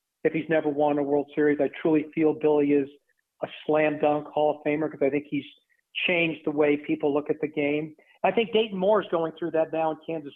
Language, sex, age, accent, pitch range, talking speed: English, male, 40-59, American, 150-185 Hz, 235 wpm